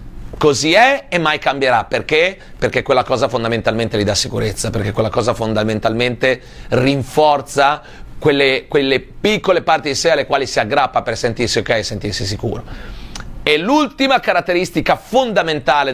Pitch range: 125-160 Hz